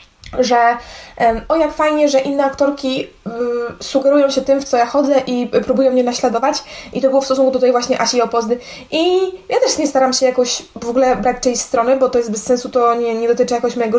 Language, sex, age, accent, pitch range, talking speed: Polish, female, 20-39, native, 240-265 Hz, 220 wpm